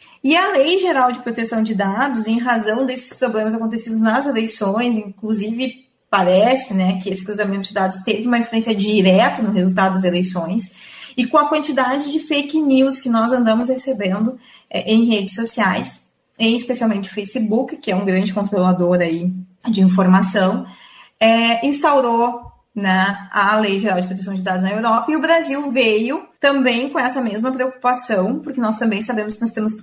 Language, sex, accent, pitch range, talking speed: Portuguese, female, Brazilian, 205-260 Hz, 165 wpm